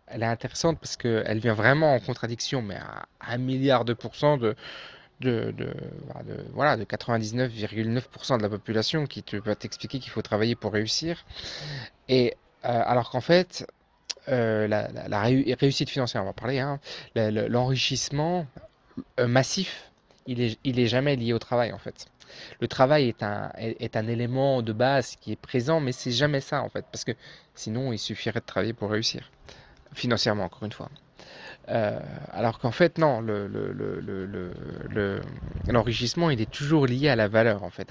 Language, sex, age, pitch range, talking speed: French, male, 20-39, 110-135 Hz, 180 wpm